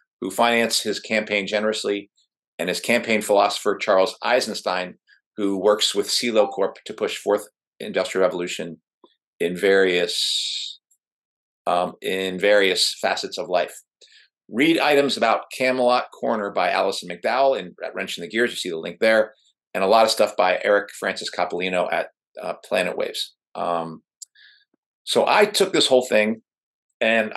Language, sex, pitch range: English, male, 100-140 Hz